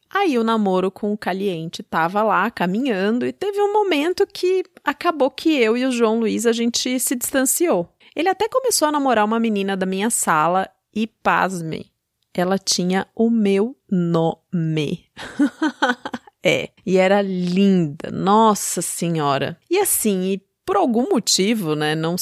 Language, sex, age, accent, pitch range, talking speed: Portuguese, female, 30-49, Brazilian, 175-250 Hz, 150 wpm